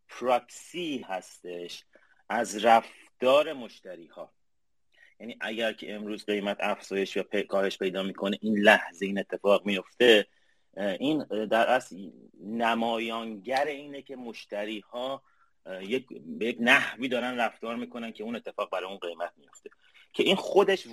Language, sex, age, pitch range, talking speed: Persian, male, 30-49, 105-140 Hz, 125 wpm